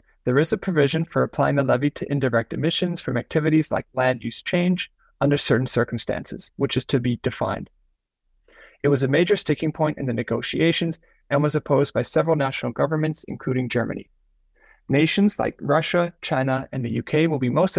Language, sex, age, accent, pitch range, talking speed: English, male, 30-49, American, 130-160 Hz, 180 wpm